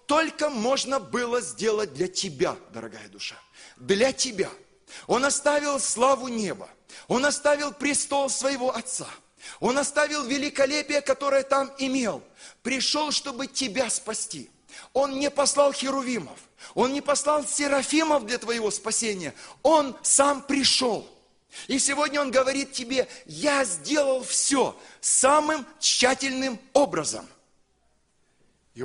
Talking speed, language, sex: 115 wpm, Russian, male